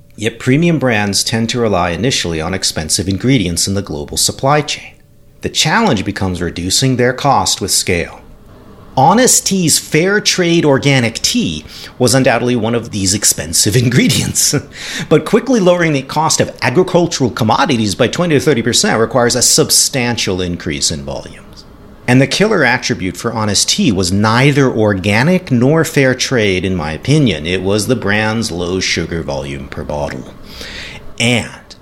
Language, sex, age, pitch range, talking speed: English, male, 40-59, 95-135 Hz, 150 wpm